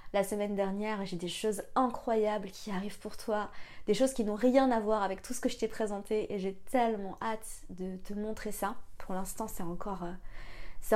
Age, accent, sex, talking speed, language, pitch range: 20-39, French, female, 205 wpm, French, 190-230 Hz